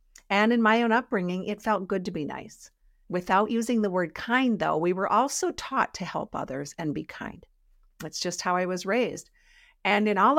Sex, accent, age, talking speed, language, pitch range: female, American, 50-69, 210 wpm, English, 165-215 Hz